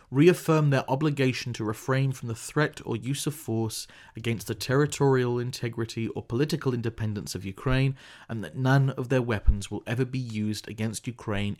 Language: English